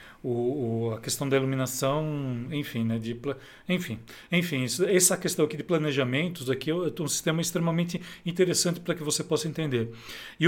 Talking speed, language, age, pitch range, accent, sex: 165 wpm, Portuguese, 40-59, 130-165 Hz, Brazilian, male